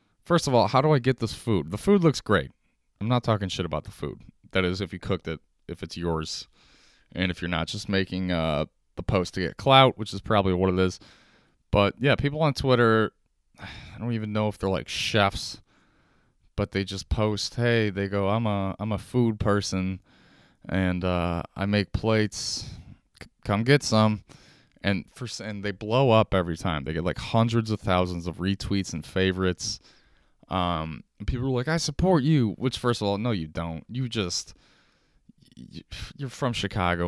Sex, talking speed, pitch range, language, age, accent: male, 195 wpm, 90-120 Hz, English, 20-39, American